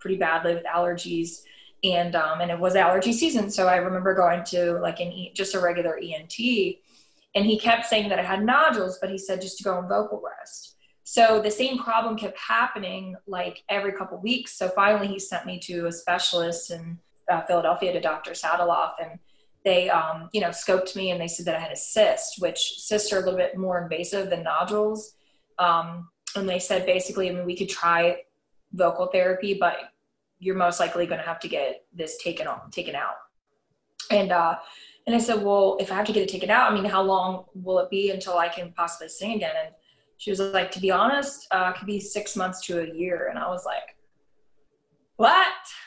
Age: 20-39